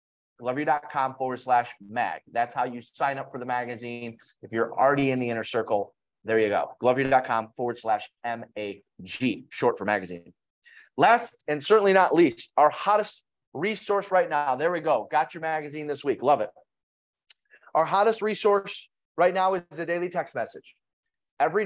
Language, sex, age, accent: English, male, 30-49, American